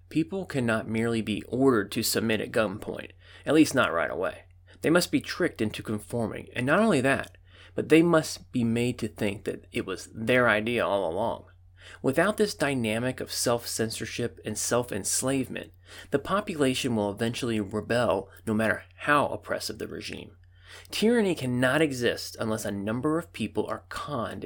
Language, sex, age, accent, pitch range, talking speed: English, male, 30-49, American, 100-135 Hz, 160 wpm